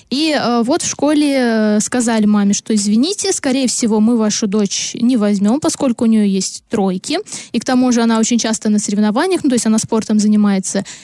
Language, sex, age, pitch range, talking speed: Russian, female, 20-39, 215-255 Hz, 190 wpm